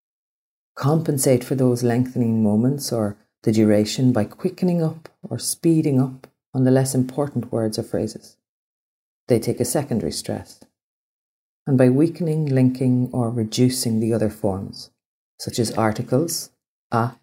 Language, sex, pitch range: English, female, 110-135 Hz